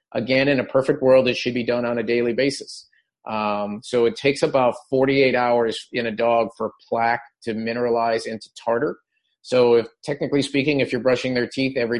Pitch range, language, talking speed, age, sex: 120-135 Hz, English, 195 wpm, 40-59, male